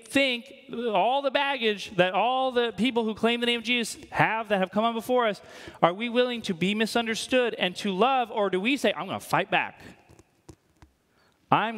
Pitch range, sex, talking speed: 200-245 Hz, male, 205 wpm